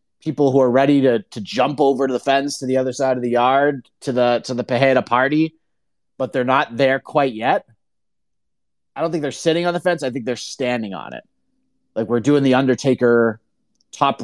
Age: 30-49